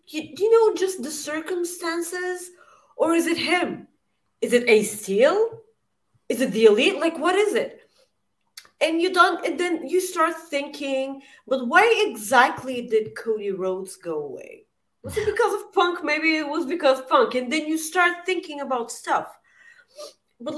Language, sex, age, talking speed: English, female, 30-49, 170 wpm